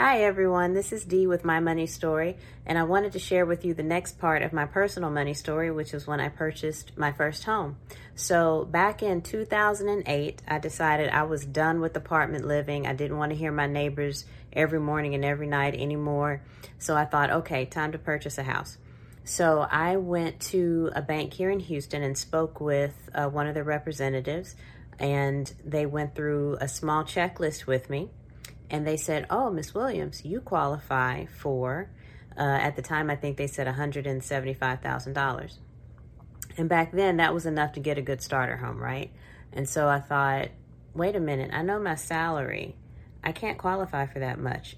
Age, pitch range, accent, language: 30-49, 140-165 Hz, American, English